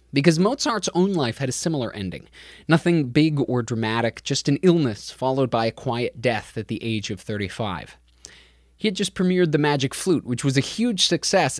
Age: 20-39